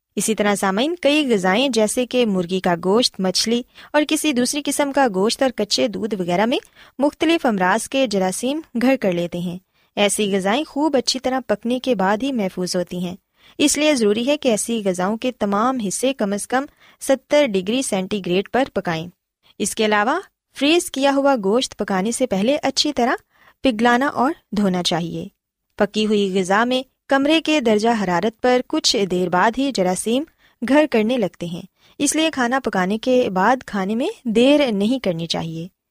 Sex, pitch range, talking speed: female, 195-270 Hz, 175 wpm